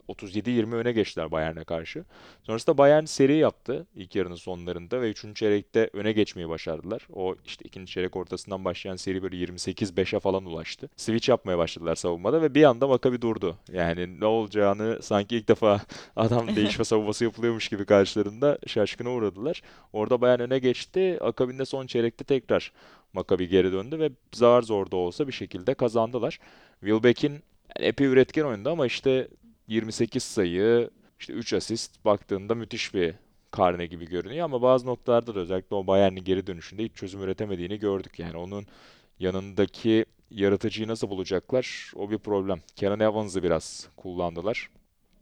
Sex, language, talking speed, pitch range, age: male, Turkish, 150 wpm, 95-120 Hz, 30-49